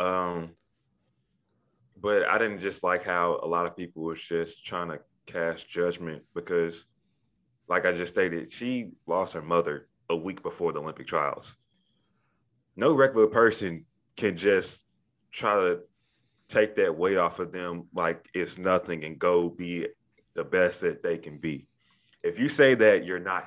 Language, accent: English, American